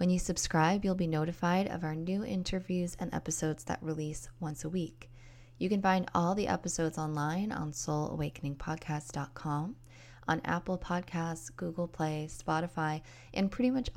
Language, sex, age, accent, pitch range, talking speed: English, female, 20-39, American, 150-185 Hz, 150 wpm